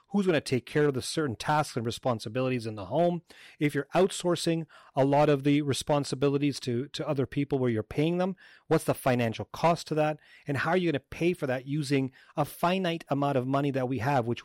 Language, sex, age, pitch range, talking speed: English, male, 30-49, 125-150 Hz, 230 wpm